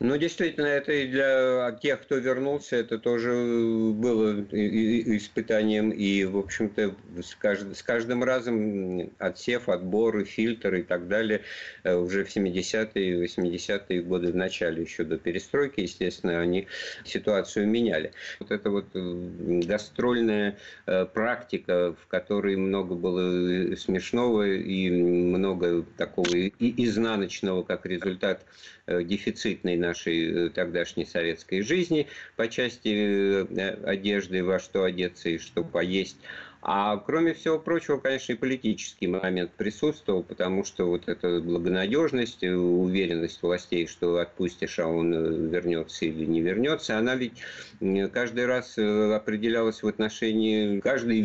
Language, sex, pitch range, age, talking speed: Russian, male, 90-115 Hz, 50-69, 120 wpm